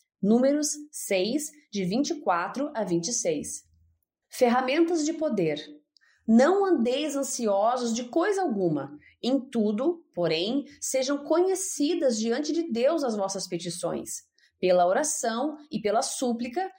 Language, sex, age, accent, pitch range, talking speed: Portuguese, female, 30-49, Brazilian, 200-300 Hz, 110 wpm